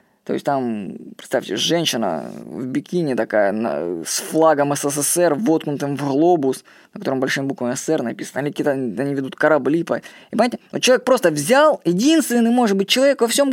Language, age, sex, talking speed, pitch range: Russian, 20-39, female, 175 wpm, 155-220 Hz